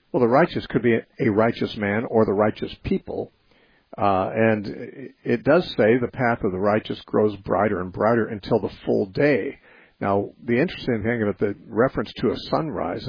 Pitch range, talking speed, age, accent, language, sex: 105-120 Hz, 185 wpm, 50-69, American, English, male